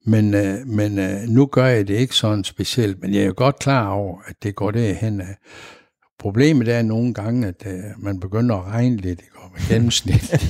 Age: 60-79